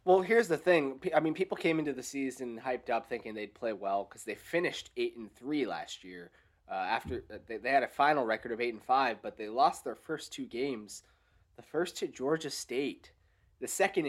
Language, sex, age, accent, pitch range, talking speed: English, male, 30-49, American, 110-145 Hz, 220 wpm